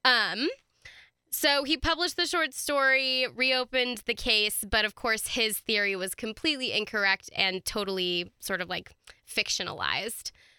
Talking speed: 135 wpm